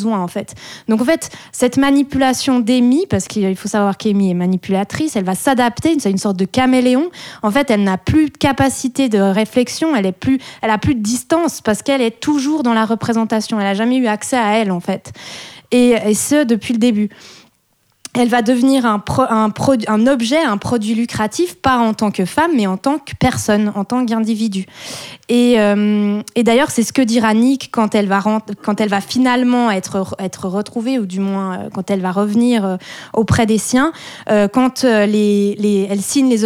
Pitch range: 205-255 Hz